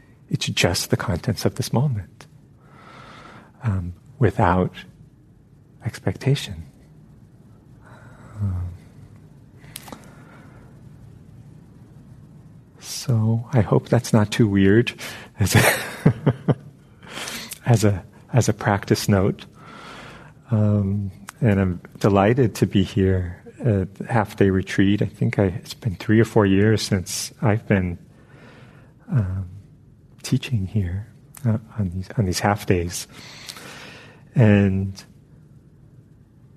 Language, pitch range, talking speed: English, 100-135 Hz, 95 wpm